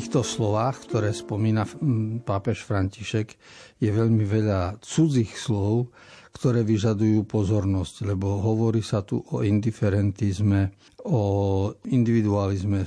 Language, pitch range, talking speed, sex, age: Slovak, 105-130 Hz, 105 wpm, male, 50-69